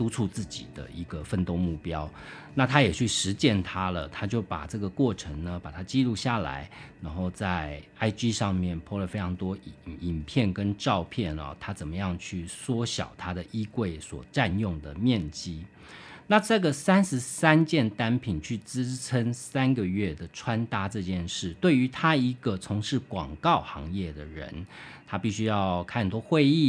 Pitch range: 90-125 Hz